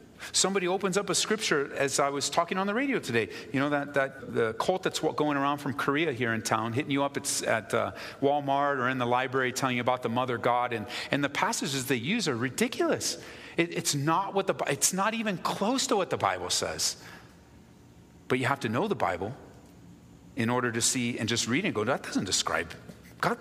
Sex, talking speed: male, 225 wpm